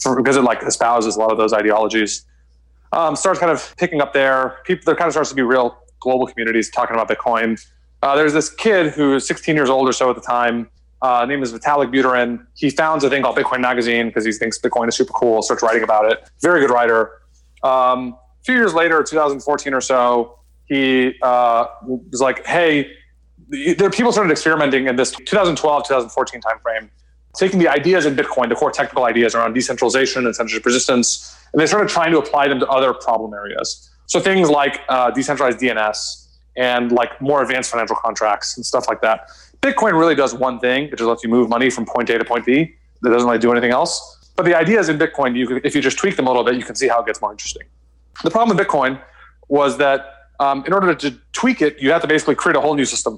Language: English